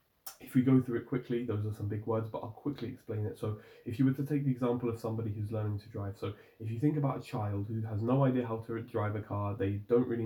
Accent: British